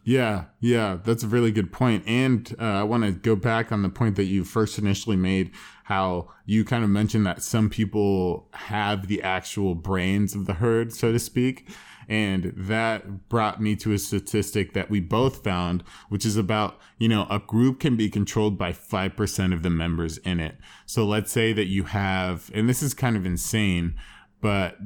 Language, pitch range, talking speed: English, 95-115 Hz, 195 wpm